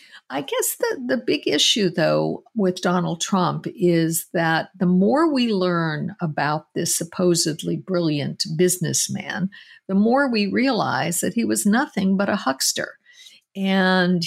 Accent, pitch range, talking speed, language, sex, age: American, 155-205 Hz, 140 wpm, English, female, 50-69